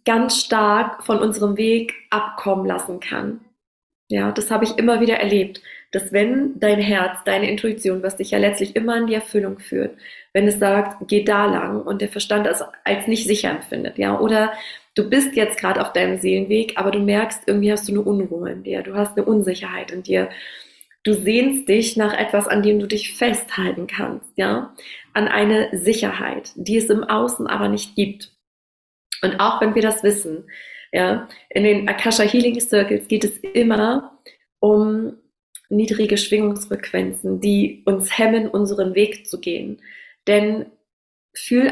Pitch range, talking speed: 200-225 Hz, 170 wpm